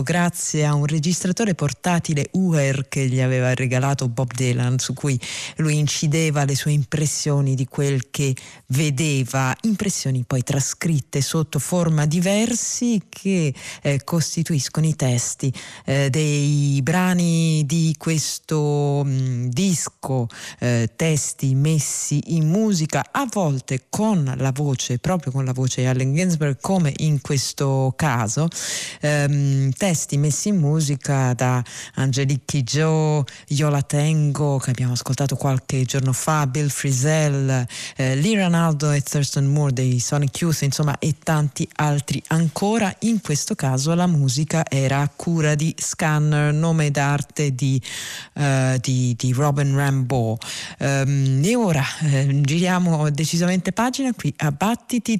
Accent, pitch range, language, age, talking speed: native, 135-160 Hz, Italian, 40-59, 135 wpm